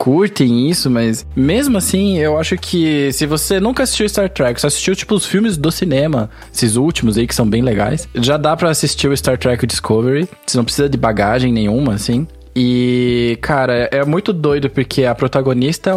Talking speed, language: 195 wpm, Portuguese